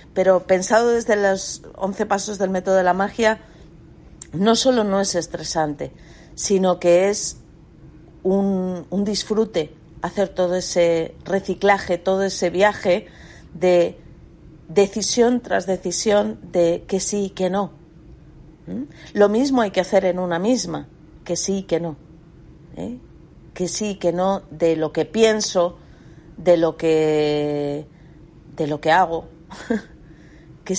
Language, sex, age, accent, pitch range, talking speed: Spanish, female, 40-59, Spanish, 160-190 Hz, 130 wpm